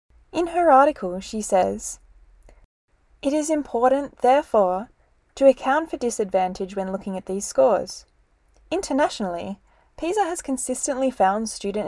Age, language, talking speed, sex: 20-39, English, 120 wpm, female